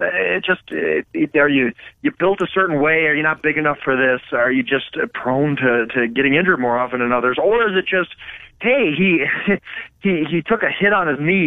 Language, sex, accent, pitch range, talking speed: English, male, American, 125-185 Hz, 220 wpm